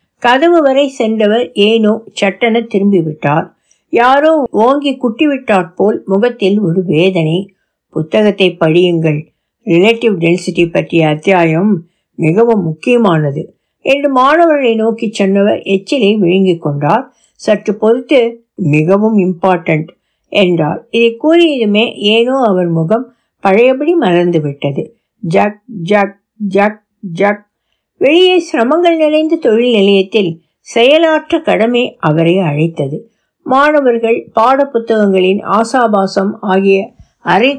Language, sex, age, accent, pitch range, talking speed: Tamil, female, 60-79, native, 185-245 Hz, 80 wpm